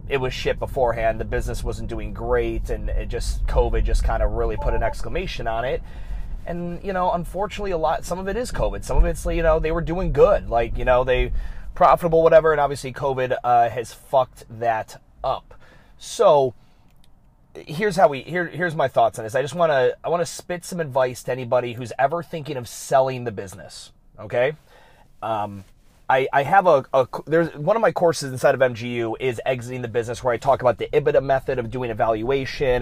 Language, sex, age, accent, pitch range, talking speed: English, male, 30-49, American, 115-165 Hz, 205 wpm